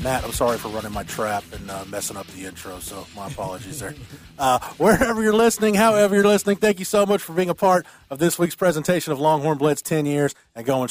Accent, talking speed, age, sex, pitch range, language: American, 235 wpm, 30-49, male, 115-160 Hz, English